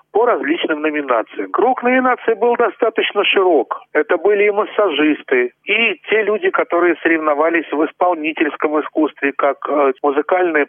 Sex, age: male, 40-59